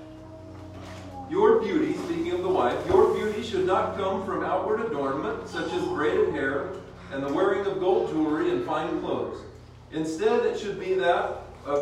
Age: 40-59